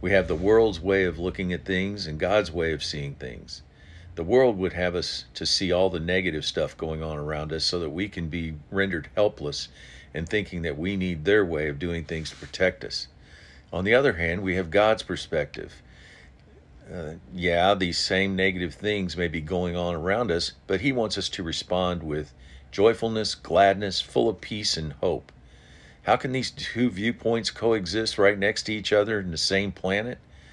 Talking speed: 195 wpm